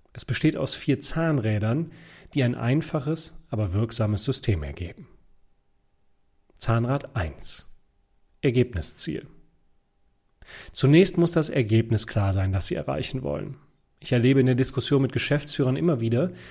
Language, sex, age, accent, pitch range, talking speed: German, male, 30-49, German, 110-145 Hz, 125 wpm